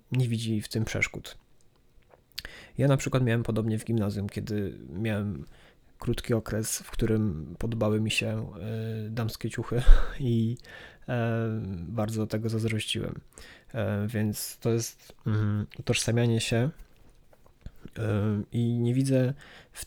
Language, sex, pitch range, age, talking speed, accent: Polish, male, 110-120 Hz, 20-39, 110 wpm, native